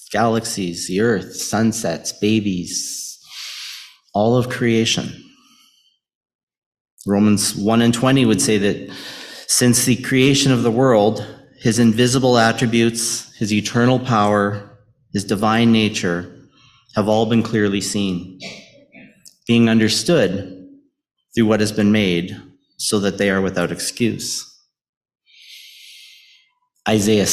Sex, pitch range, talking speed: male, 105-130 Hz, 110 wpm